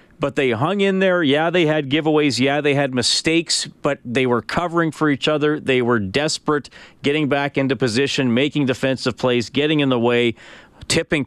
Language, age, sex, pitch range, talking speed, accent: English, 40-59, male, 115-135 Hz, 185 wpm, American